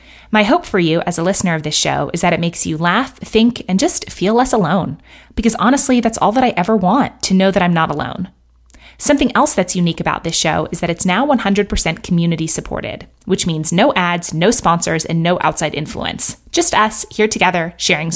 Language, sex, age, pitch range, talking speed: English, female, 20-39, 170-220 Hz, 210 wpm